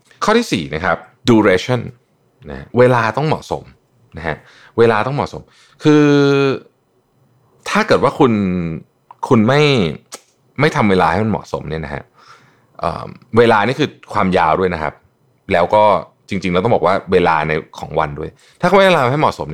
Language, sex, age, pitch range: Thai, male, 20-39, 85-130 Hz